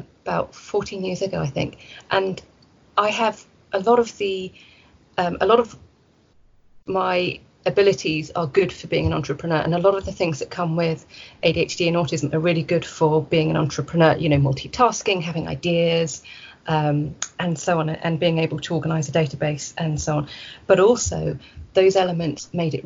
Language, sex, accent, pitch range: English, female, British, 160-185 Hz